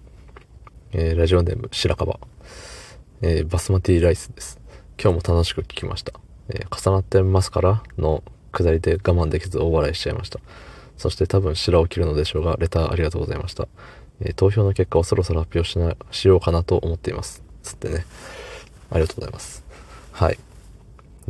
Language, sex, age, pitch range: Japanese, male, 20-39, 80-100 Hz